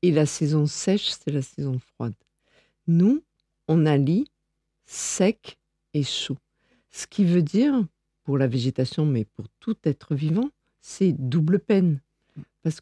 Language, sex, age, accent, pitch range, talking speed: French, female, 50-69, French, 145-210 Hz, 145 wpm